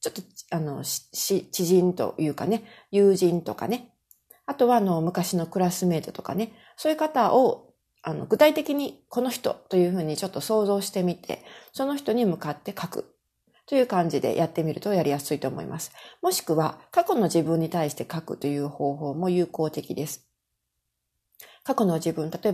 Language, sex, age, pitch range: Japanese, female, 40-59, 165-220 Hz